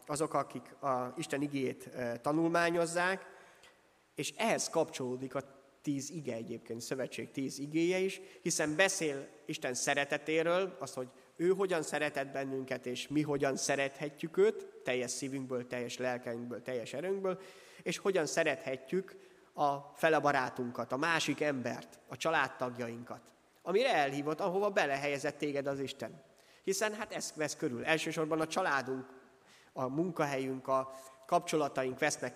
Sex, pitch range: male, 130-165 Hz